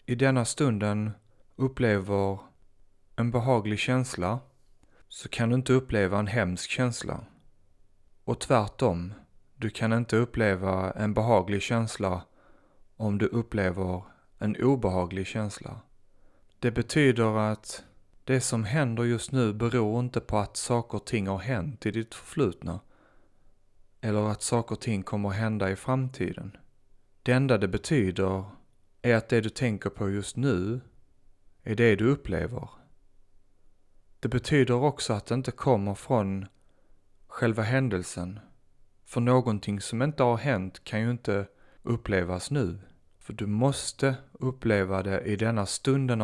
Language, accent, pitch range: Swedish, native, 100-125 Hz